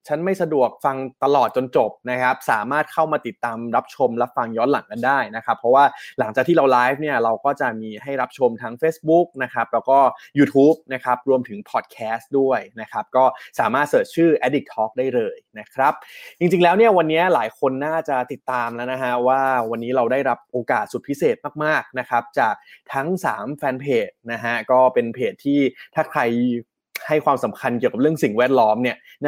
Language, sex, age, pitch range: Thai, male, 20-39, 120-155 Hz